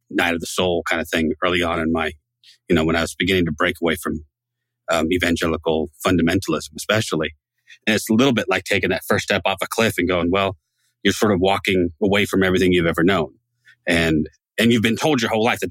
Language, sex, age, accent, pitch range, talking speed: English, male, 30-49, American, 85-115 Hz, 230 wpm